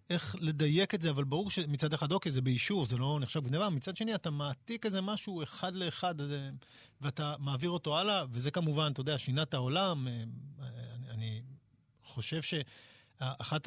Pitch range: 125-170 Hz